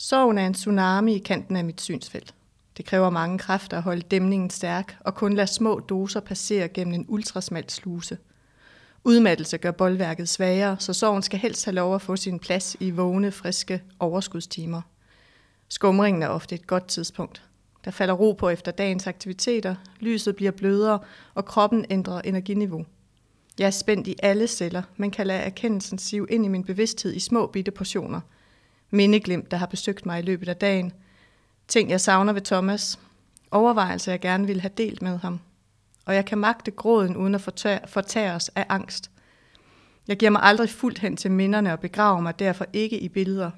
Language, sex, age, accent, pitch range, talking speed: Danish, female, 30-49, native, 180-205 Hz, 180 wpm